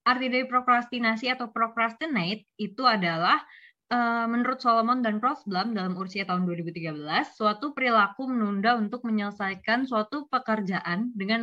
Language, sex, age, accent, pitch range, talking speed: Indonesian, female, 20-39, native, 190-245 Hz, 120 wpm